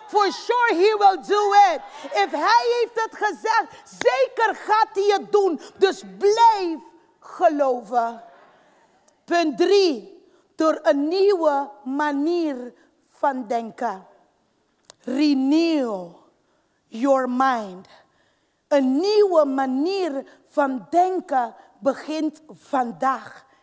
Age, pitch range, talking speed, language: 40-59, 250-345 Hz, 95 wpm, Dutch